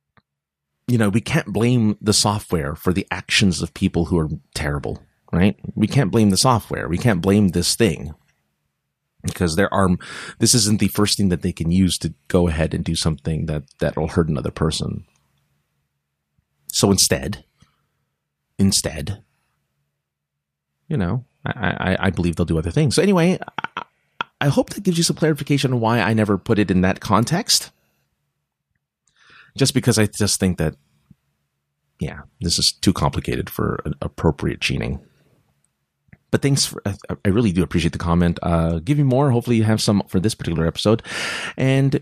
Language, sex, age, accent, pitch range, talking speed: English, male, 30-49, American, 85-125 Hz, 170 wpm